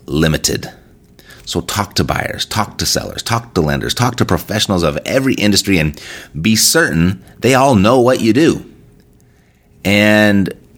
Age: 30-49